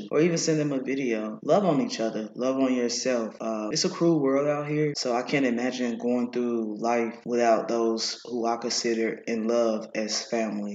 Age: 20-39